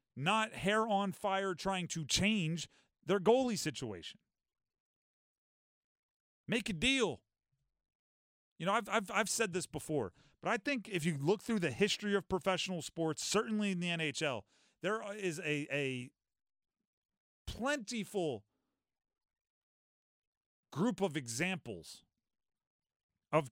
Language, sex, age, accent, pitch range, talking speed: English, male, 40-59, American, 150-205 Hz, 125 wpm